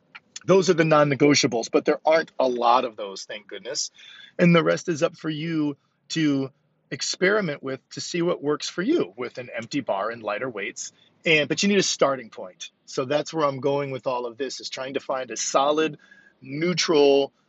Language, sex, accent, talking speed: English, male, American, 200 wpm